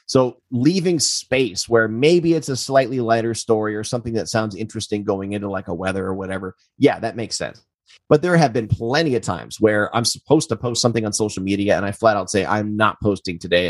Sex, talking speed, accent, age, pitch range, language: male, 225 wpm, American, 30-49, 105-140 Hz, English